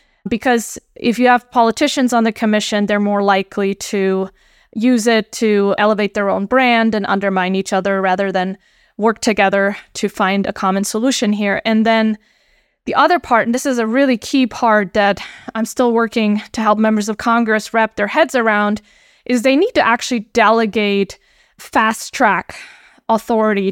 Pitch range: 200-235 Hz